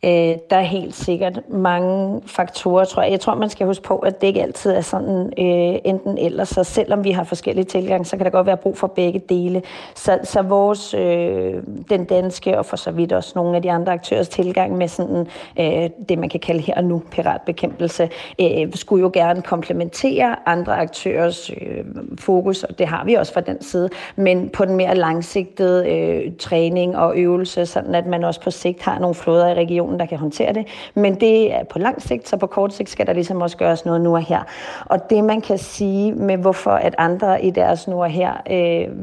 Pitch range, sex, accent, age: 175-195 Hz, female, native, 40-59